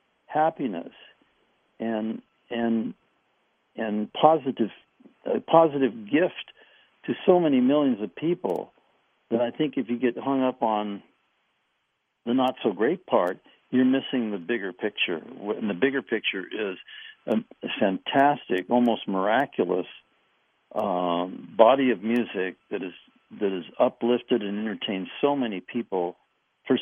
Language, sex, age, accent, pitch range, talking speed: English, male, 60-79, American, 105-135 Hz, 125 wpm